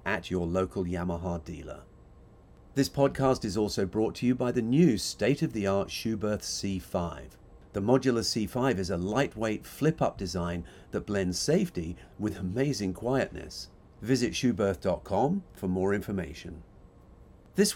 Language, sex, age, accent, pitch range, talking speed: English, male, 40-59, British, 90-125 Hz, 130 wpm